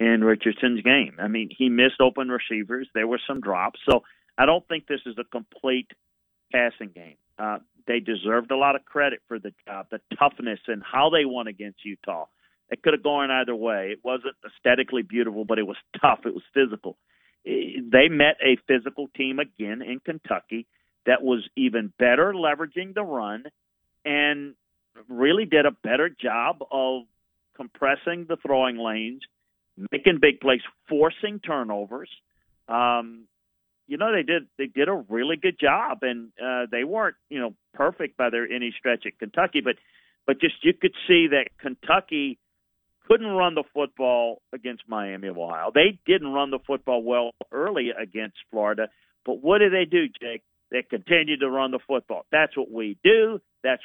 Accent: American